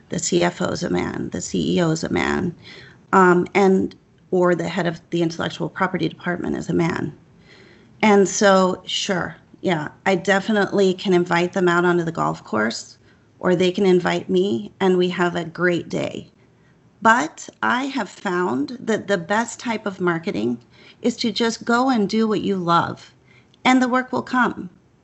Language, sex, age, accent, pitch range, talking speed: English, female, 40-59, American, 180-230 Hz, 175 wpm